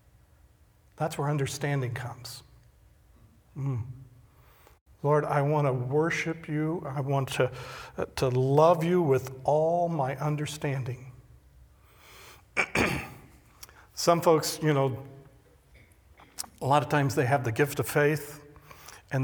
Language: English